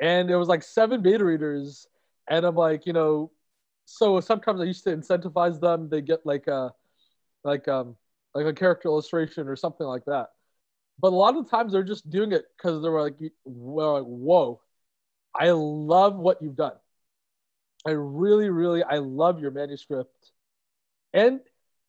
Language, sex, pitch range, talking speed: English, male, 155-190 Hz, 165 wpm